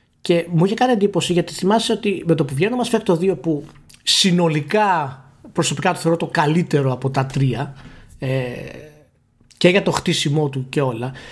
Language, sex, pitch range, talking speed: Greek, male, 145-230 Hz, 175 wpm